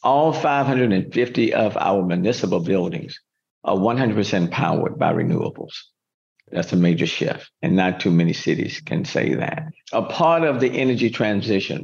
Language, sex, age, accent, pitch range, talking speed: English, male, 50-69, American, 100-130 Hz, 145 wpm